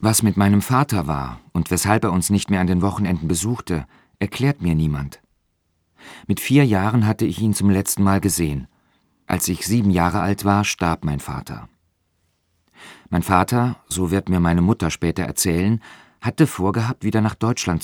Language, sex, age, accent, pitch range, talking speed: German, male, 40-59, German, 85-105 Hz, 170 wpm